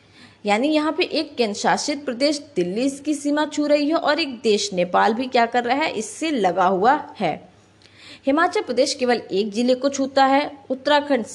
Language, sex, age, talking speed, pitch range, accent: Hindi, female, 20-39, 185 wpm, 210-285 Hz, native